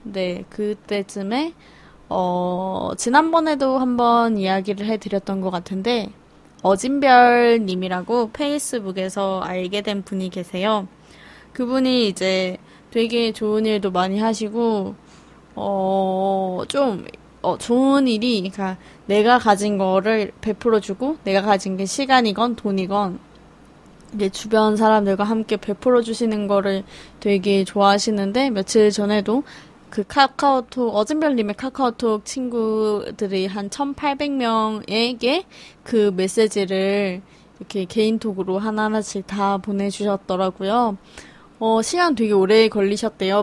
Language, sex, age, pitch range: Korean, female, 20-39, 195-235 Hz